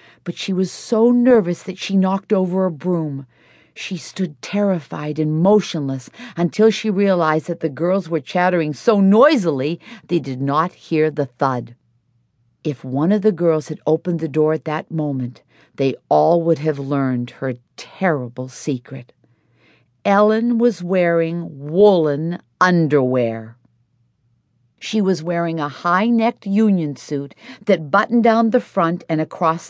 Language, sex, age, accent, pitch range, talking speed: English, female, 50-69, American, 155-220 Hz, 145 wpm